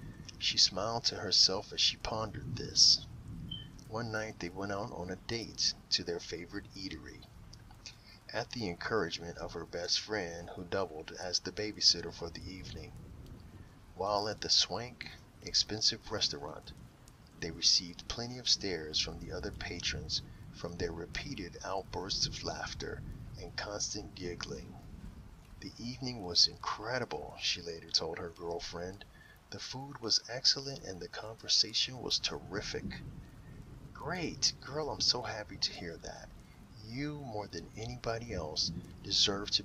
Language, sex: English, male